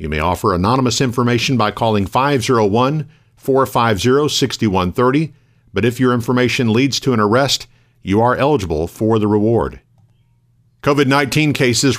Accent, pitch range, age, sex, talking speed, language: American, 105-125 Hz, 50-69, male, 120 wpm, English